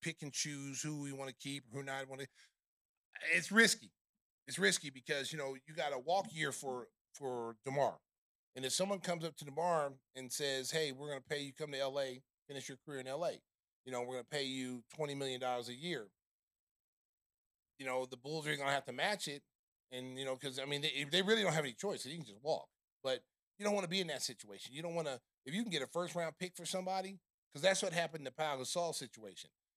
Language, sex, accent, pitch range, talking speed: English, male, American, 130-160 Hz, 250 wpm